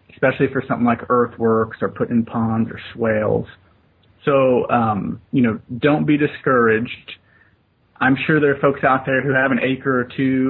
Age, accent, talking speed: 30-49, American, 170 wpm